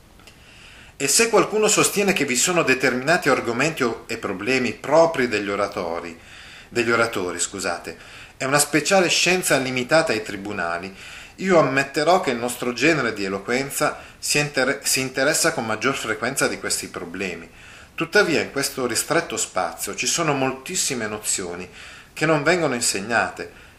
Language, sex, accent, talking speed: Italian, male, native, 140 wpm